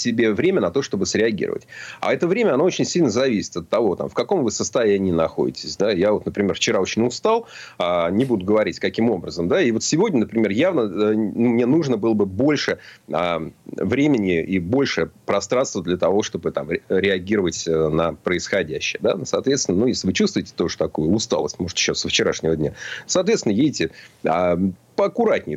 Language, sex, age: Russian, male, 30-49